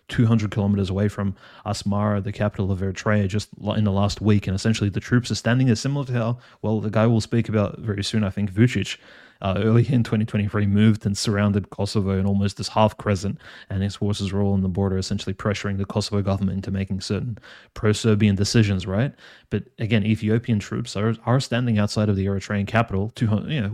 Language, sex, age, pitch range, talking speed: English, male, 20-39, 100-115 Hz, 210 wpm